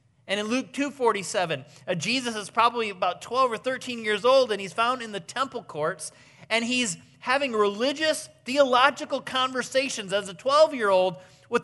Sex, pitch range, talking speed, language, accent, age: male, 155-250 Hz, 155 wpm, English, American, 30-49